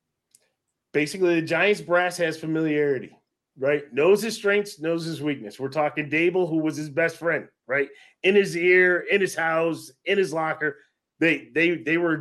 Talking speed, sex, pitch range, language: 170 wpm, male, 130-160 Hz, English